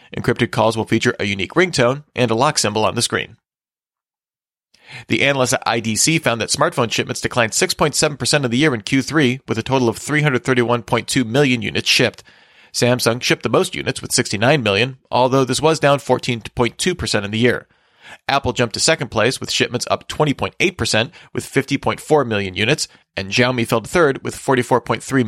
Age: 40-59